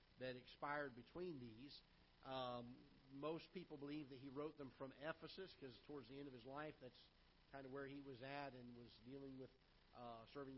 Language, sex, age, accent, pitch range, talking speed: English, male, 50-69, American, 130-155 Hz, 195 wpm